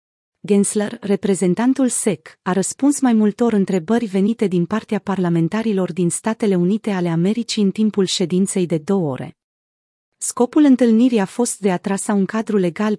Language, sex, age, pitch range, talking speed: Romanian, female, 30-49, 180-220 Hz, 155 wpm